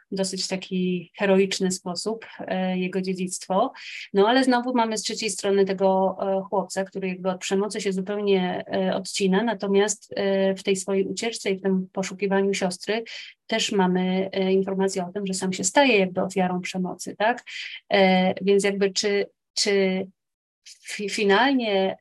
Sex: female